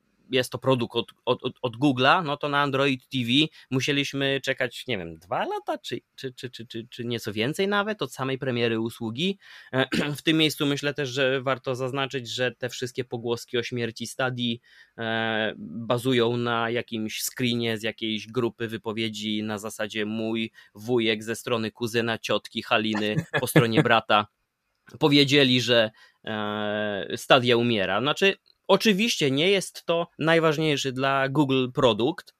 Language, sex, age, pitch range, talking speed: Polish, male, 20-39, 120-160 Hz, 150 wpm